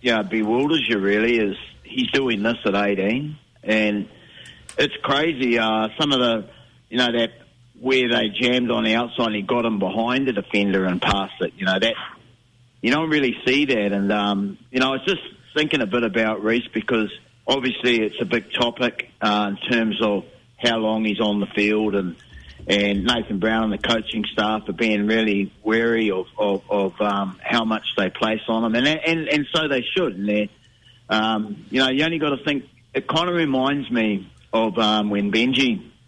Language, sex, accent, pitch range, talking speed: English, male, Australian, 105-125 Hz, 195 wpm